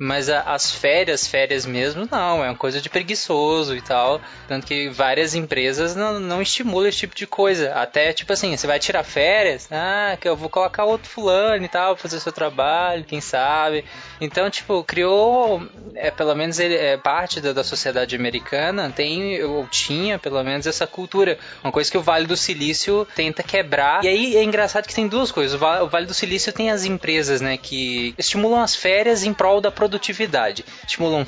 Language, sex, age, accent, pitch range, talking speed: Portuguese, male, 20-39, Brazilian, 150-205 Hz, 190 wpm